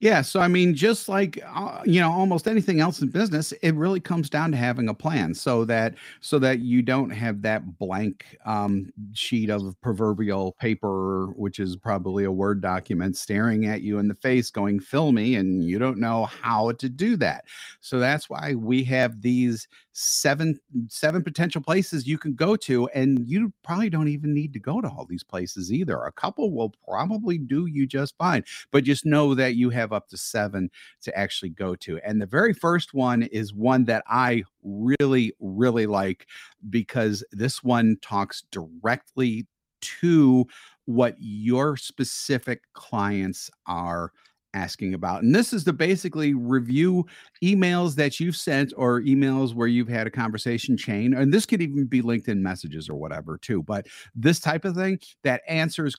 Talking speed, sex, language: 180 wpm, male, English